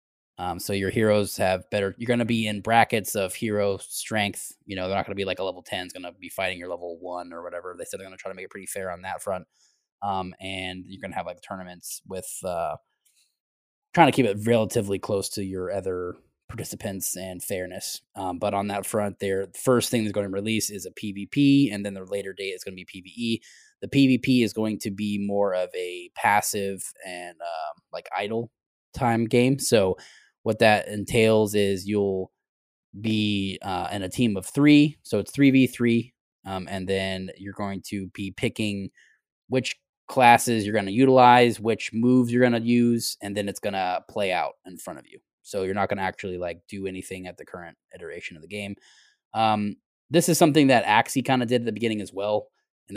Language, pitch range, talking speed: English, 95-115 Hz, 215 wpm